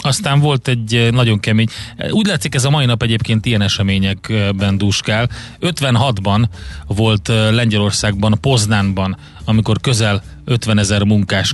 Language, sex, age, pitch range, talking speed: Hungarian, male, 30-49, 105-115 Hz, 125 wpm